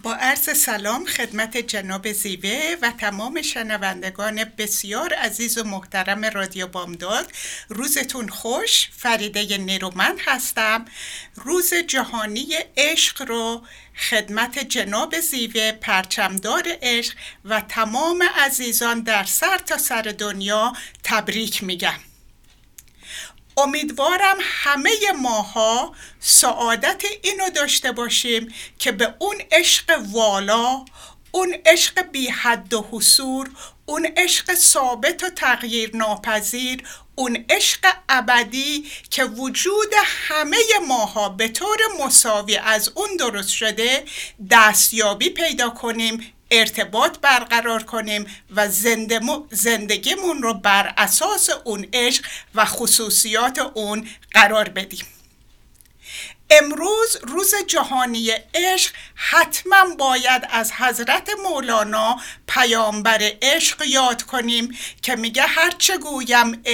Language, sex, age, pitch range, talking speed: Persian, female, 60-79, 220-295 Hz, 100 wpm